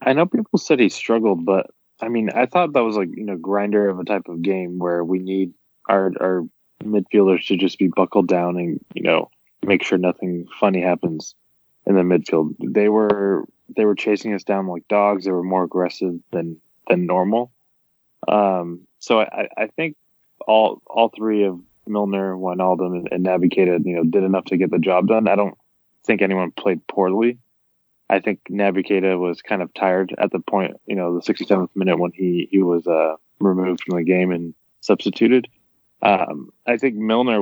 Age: 20-39